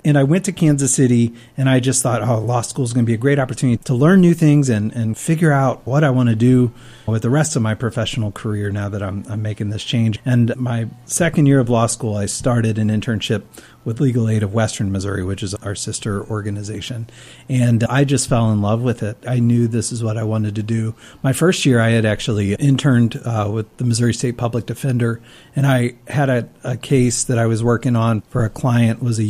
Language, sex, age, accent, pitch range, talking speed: English, male, 30-49, American, 110-130 Hz, 240 wpm